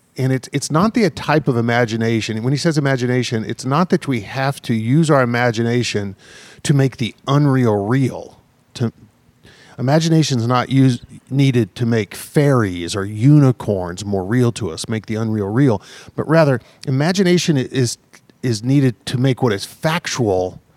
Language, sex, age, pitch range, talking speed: English, male, 40-59, 110-135 Hz, 155 wpm